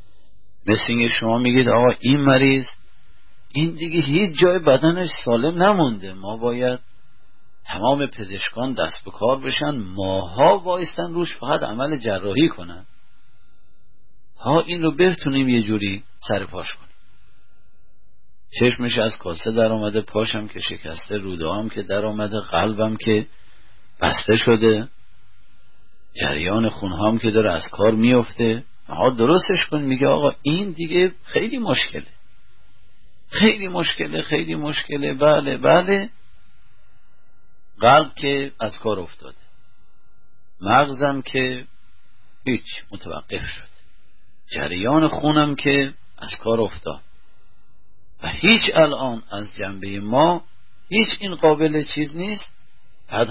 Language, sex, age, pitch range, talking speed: Persian, male, 40-59, 105-150 Hz, 115 wpm